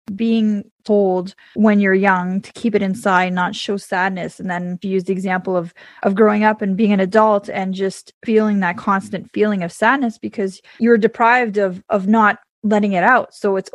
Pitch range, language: 195-225 Hz, English